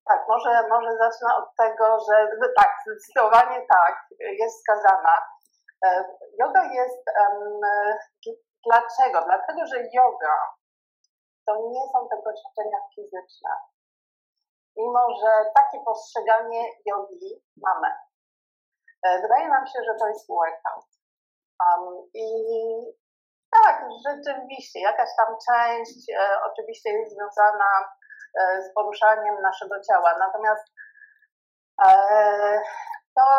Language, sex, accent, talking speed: Polish, female, native, 100 wpm